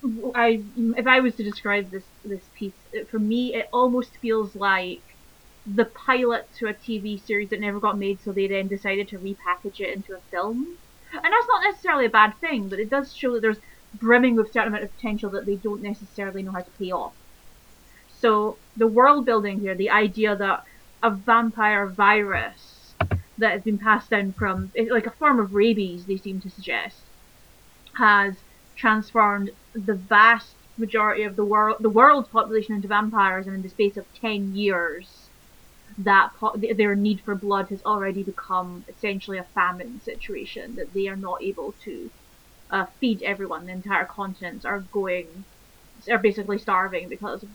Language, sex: English, female